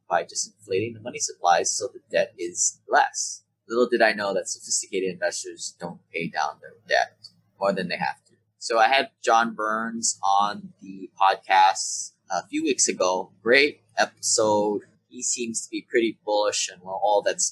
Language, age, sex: English, 20-39, male